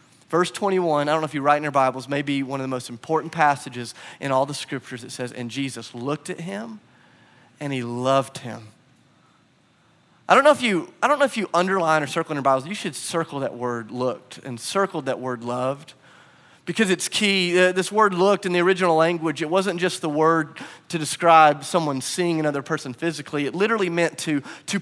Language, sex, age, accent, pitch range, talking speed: English, male, 30-49, American, 150-220 Hz, 210 wpm